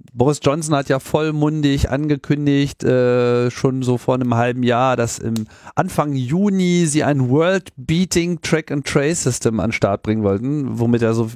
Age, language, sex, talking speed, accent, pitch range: 40-59, German, male, 150 wpm, German, 115-145 Hz